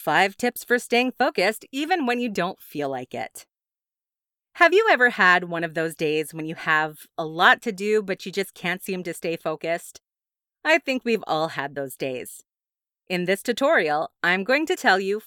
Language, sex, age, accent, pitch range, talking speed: English, female, 30-49, American, 170-245 Hz, 195 wpm